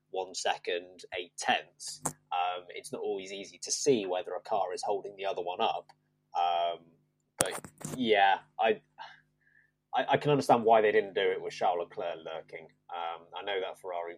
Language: English